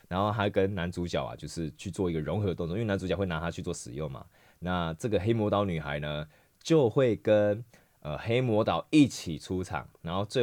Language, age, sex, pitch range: Chinese, 20-39, male, 85-120 Hz